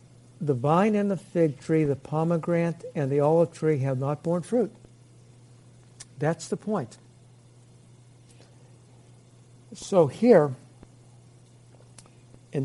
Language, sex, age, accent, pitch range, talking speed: English, male, 60-79, American, 125-170 Hz, 105 wpm